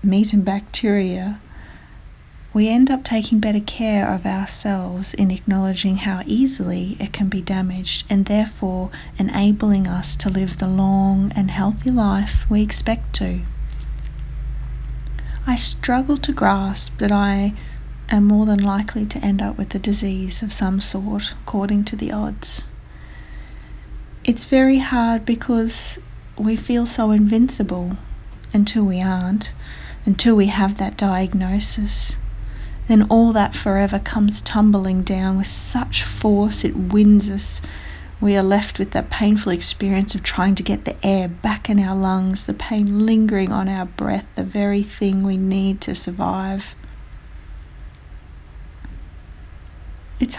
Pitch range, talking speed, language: 185-210 Hz, 140 wpm, English